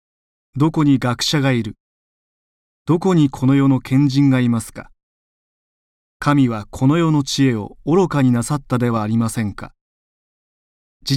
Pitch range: 110-145 Hz